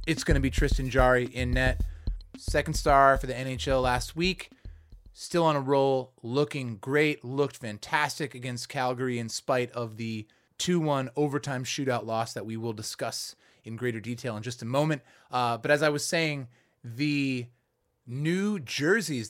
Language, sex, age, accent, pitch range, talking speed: English, male, 30-49, American, 120-150 Hz, 165 wpm